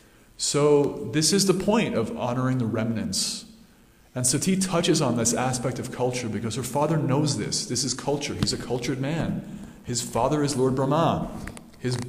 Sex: male